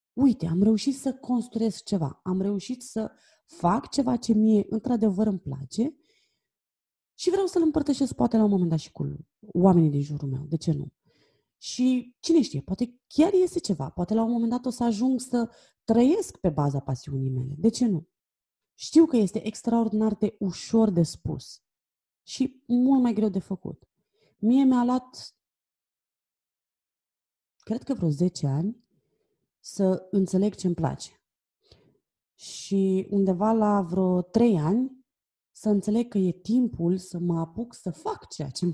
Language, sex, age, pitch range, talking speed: Romanian, female, 30-49, 180-245 Hz, 160 wpm